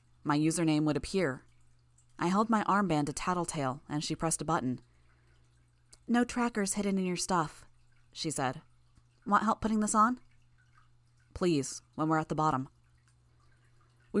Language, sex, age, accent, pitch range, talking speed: English, female, 20-39, American, 120-180 Hz, 150 wpm